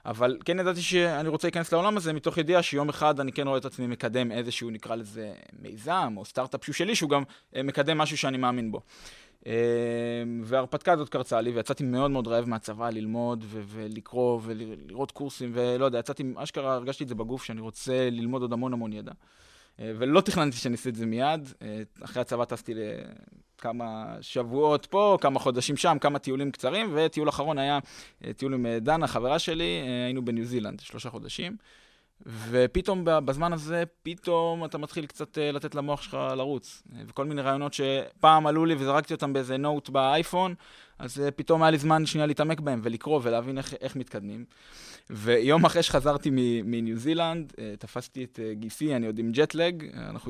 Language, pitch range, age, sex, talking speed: Hebrew, 120-155 Hz, 20-39, male, 170 wpm